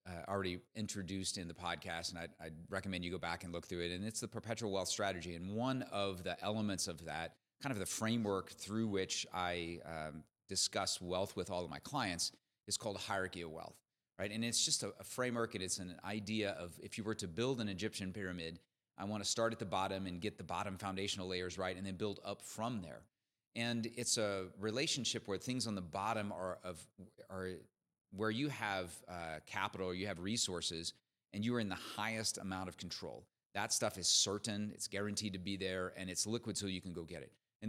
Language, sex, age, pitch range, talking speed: English, male, 30-49, 95-110 Hz, 220 wpm